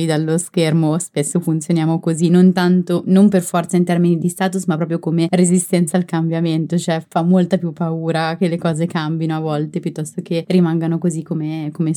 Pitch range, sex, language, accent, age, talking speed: 170-205 Hz, female, Italian, native, 20-39, 185 wpm